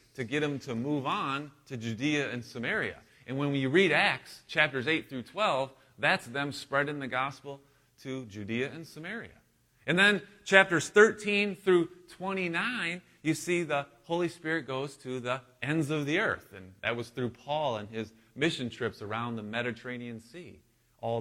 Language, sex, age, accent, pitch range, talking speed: English, male, 30-49, American, 110-145 Hz, 170 wpm